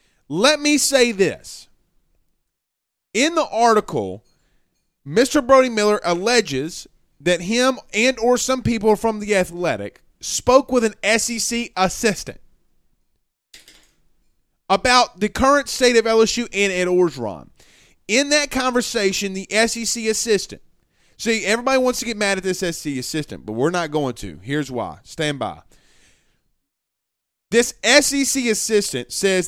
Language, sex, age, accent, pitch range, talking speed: English, male, 30-49, American, 155-255 Hz, 130 wpm